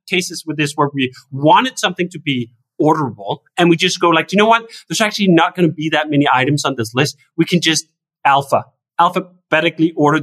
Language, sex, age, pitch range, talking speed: English, male, 30-49, 145-185 Hz, 210 wpm